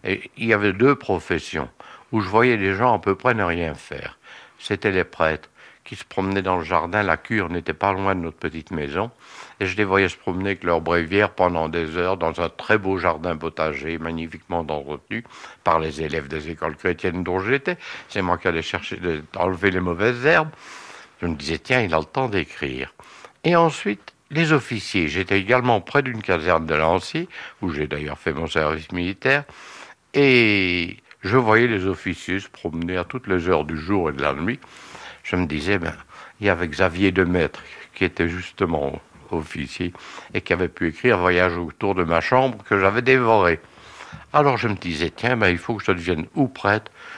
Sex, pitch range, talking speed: male, 85-110 Hz, 200 wpm